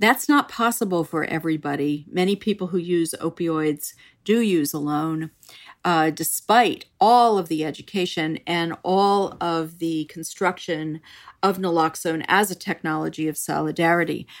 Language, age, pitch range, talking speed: English, 50-69, 160-210 Hz, 130 wpm